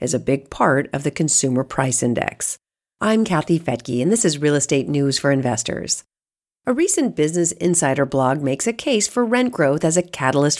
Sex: female